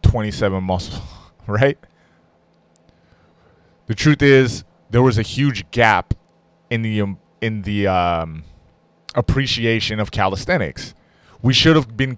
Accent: American